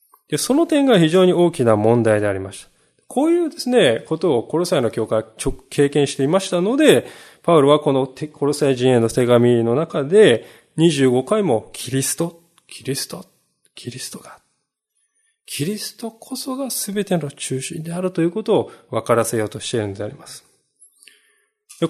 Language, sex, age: Japanese, male, 20-39